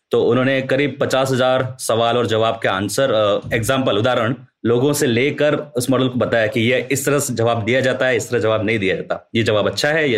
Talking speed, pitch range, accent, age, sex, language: 225 wpm, 115-140 Hz, native, 30-49, male, Hindi